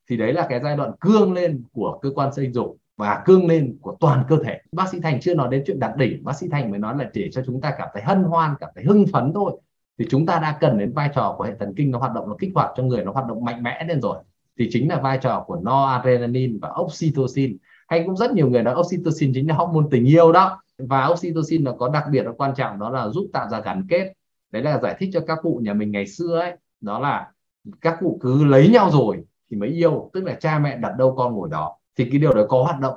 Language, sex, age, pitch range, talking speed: Vietnamese, male, 20-39, 125-165 Hz, 280 wpm